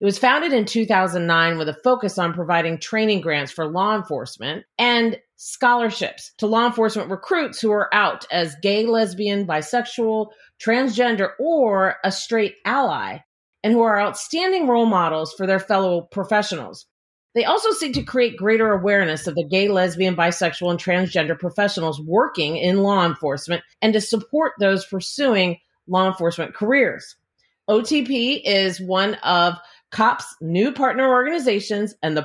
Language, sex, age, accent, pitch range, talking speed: English, female, 40-59, American, 175-230 Hz, 150 wpm